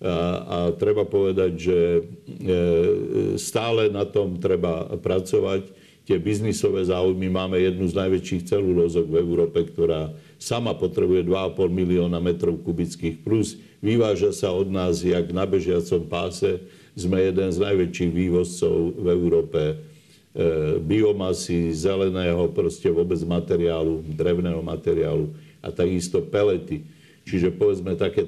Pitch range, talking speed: 85-100 Hz, 125 wpm